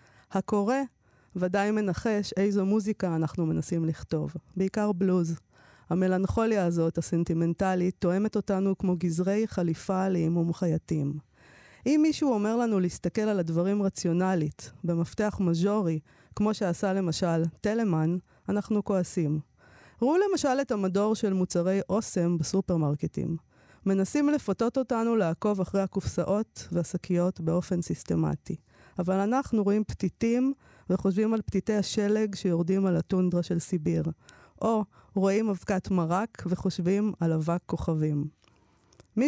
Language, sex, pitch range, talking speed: Hebrew, female, 170-210 Hz, 115 wpm